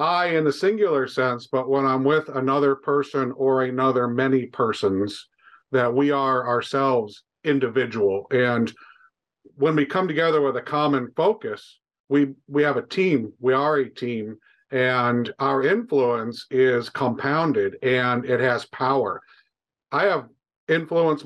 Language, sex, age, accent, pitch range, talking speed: English, male, 50-69, American, 125-150 Hz, 140 wpm